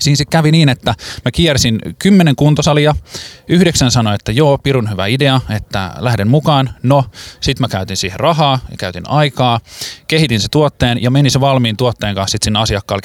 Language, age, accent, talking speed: Finnish, 20-39, native, 185 wpm